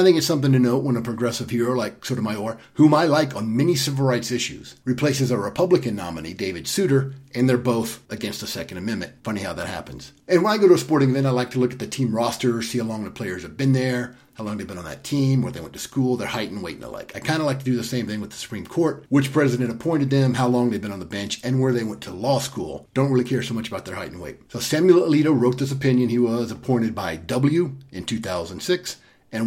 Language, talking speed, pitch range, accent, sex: English, 275 wpm, 115-140 Hz, American, male